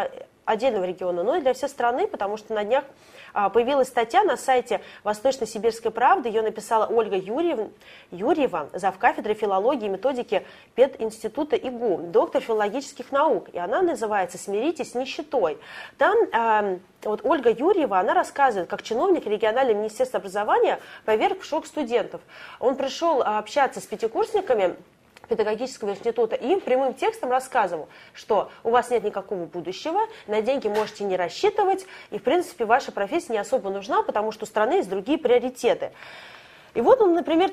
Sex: female